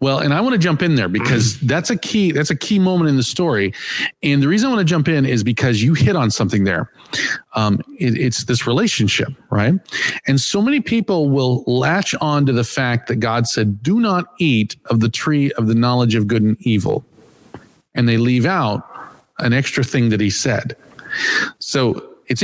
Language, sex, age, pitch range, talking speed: English, male, 40-59, 115-165 Hz, 210 wpm